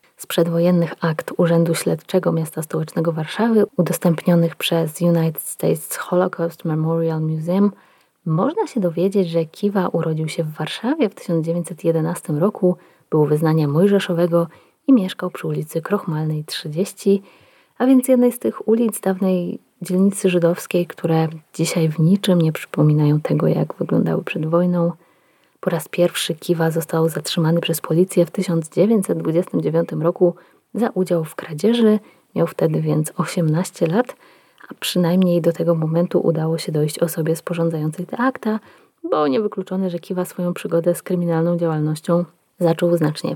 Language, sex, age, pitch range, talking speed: Polish, female, 20-39, 160-185 Hz, 140 wpm